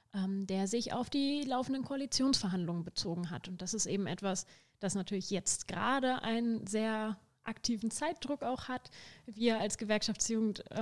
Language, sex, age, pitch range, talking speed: German, female, 30-49, 205-240 Hz, 145 wpm